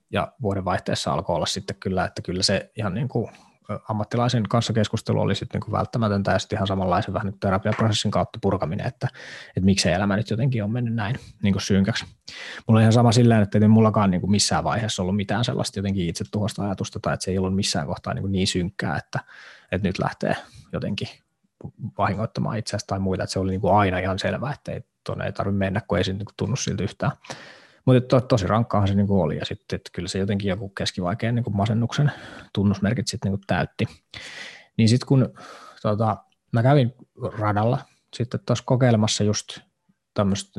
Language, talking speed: Finnish, 195 wpm